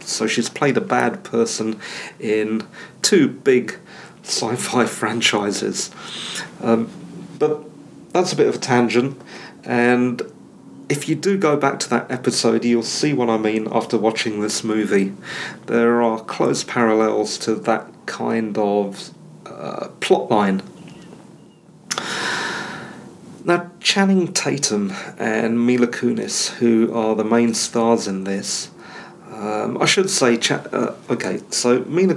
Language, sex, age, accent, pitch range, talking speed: English, male, 40-59, British, 110-145 Hz, 130 wpm